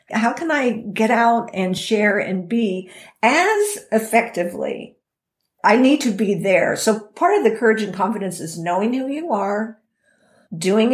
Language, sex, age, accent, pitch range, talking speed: English, female, 50-69, American, 195-240 Hz, 160 wpm